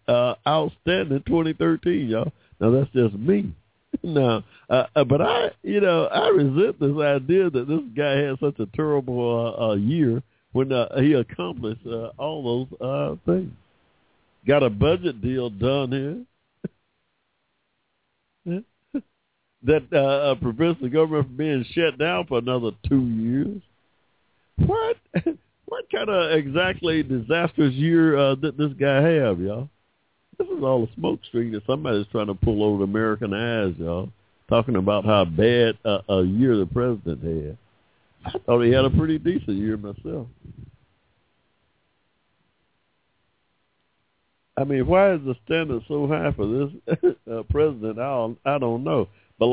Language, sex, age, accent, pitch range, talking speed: English, male, 60-79, American, 115-155 Hz, 145 wpm